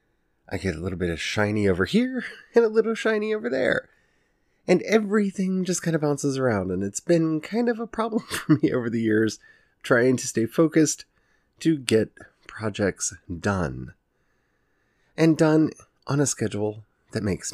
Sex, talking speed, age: male, 170 wpm, 30-49